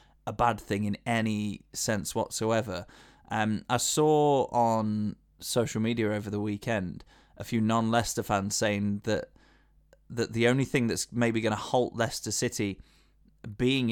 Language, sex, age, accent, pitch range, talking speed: English, male, 20-39, British, 110-135 Hz, 145 wpm